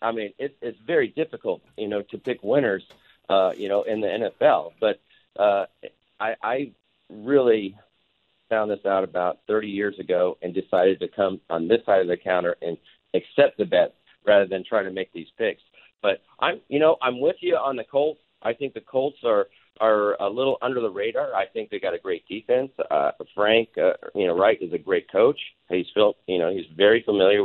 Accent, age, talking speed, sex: American, 40-59, 210 wpm, male